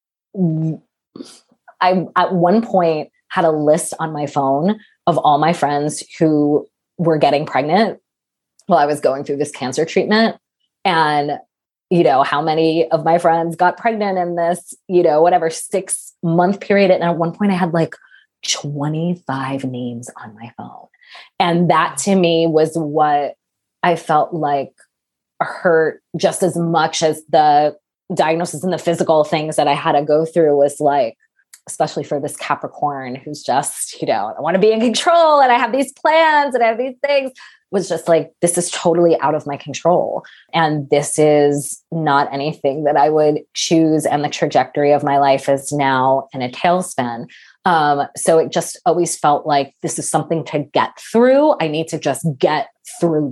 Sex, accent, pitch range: female, American, 145-180 Hz